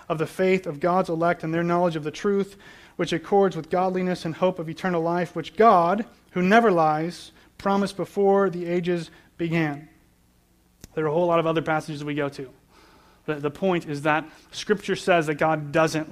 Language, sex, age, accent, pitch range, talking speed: English, male, 30-49, American, 150-175 Hz, 195 wpm